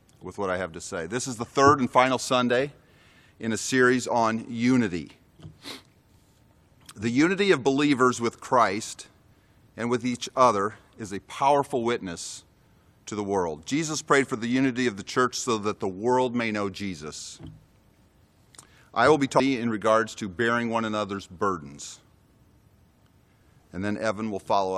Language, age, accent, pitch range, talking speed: English, 40-59, American, 100-125 Hz, 160 wpm